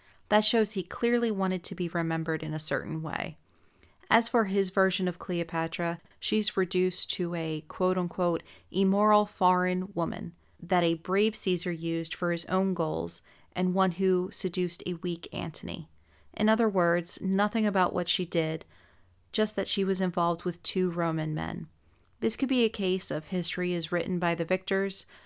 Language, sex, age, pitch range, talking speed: English, female, 30-49, 170-195 Hz, 170 wpm